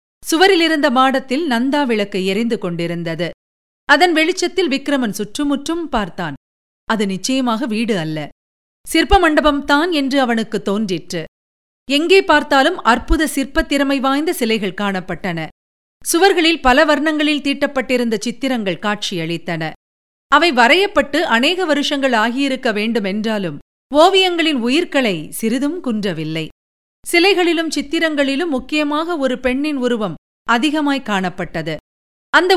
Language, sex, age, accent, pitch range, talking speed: Tamil, female, 50-69, native, 210-310 Hz, 90 wpm